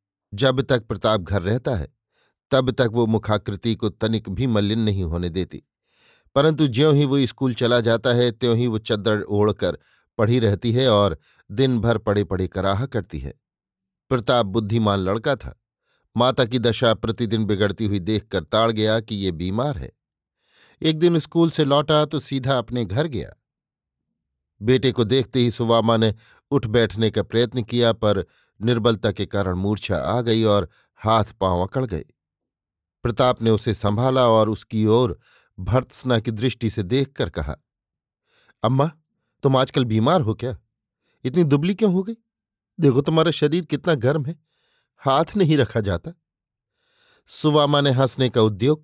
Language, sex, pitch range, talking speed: Hindi, male, 105-135 Hz, 160 wpm